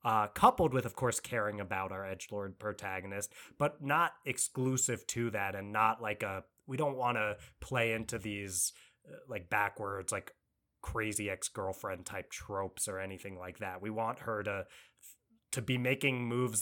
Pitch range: 105-135 Hz